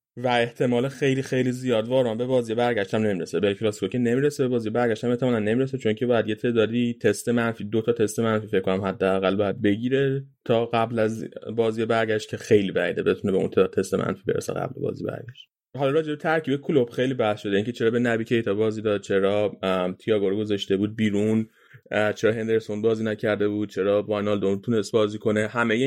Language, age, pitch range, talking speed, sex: Persian, 30-49, 105-130 Hz, 195 wpm, male